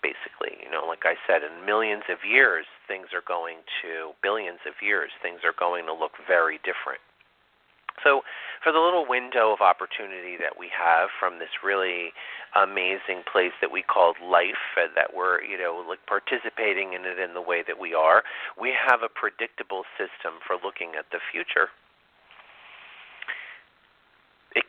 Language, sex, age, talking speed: English, male, 40-59, 170 wpm